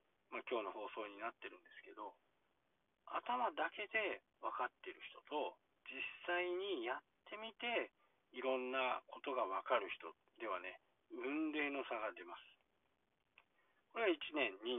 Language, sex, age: Japanese, male, 40-59